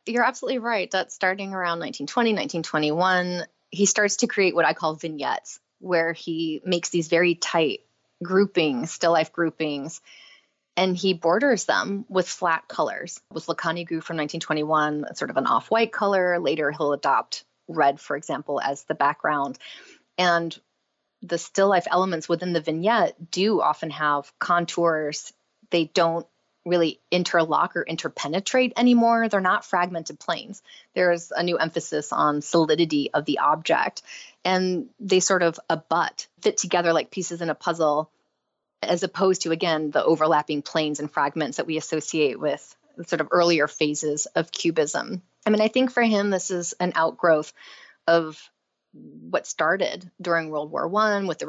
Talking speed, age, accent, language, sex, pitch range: 155 wpm, 20-39, American, English, female, 160-190 Hz